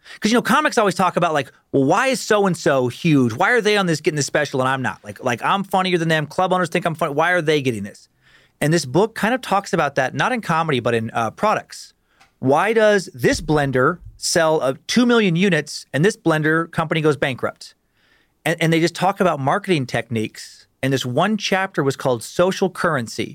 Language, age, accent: English, 40-59, American